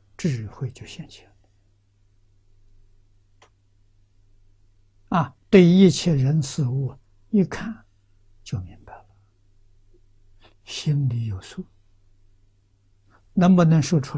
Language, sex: Chinese, male